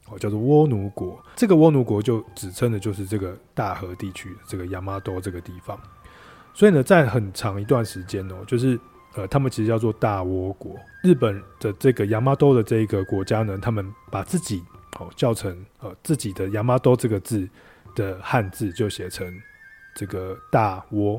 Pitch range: 95-125 Hz